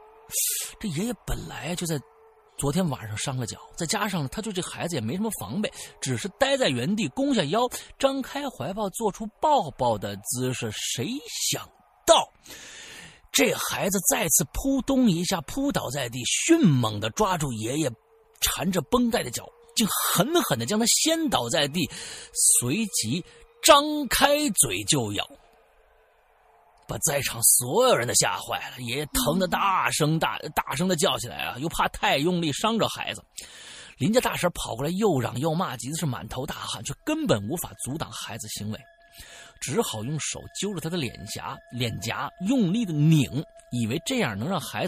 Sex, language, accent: male, Chinese, native